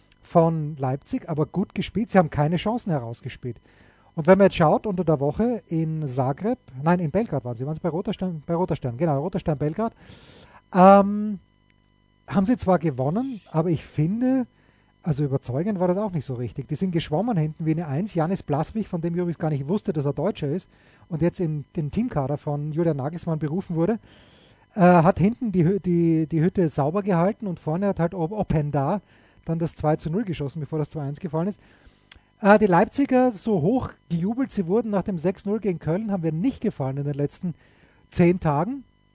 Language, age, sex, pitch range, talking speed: English, 30-49, male, 150-200 Hz, 195 wpm